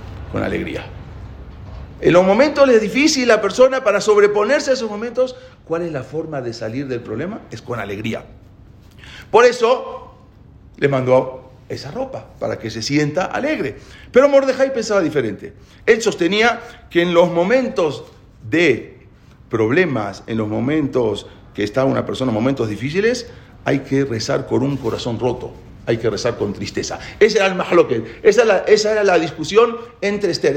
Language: English